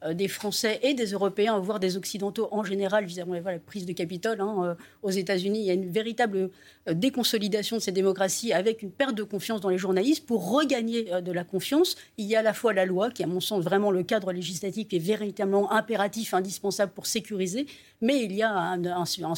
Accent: French